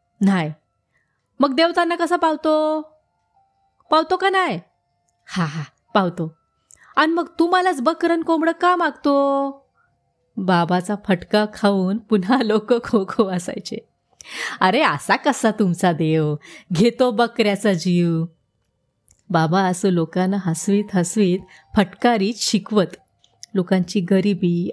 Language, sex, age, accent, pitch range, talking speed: Marathi, female, 30-49, native, 180-270 Hz, 100 wpm